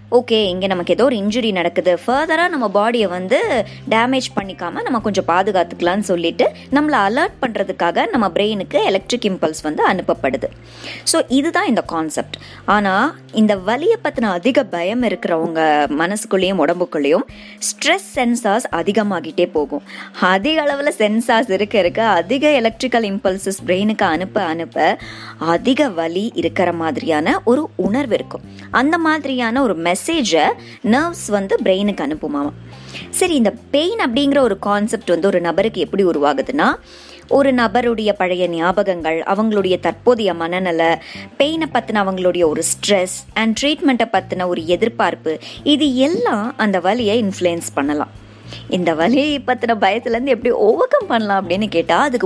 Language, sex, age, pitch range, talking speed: Tamil, male, 20-39, 175-255 Hz, 75 wpm